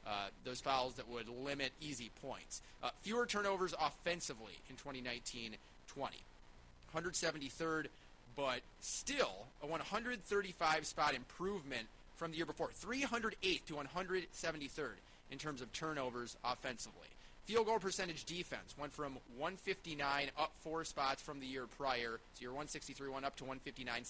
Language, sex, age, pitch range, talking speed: English, male, 30-49, 125-165 Hz, 130 wpm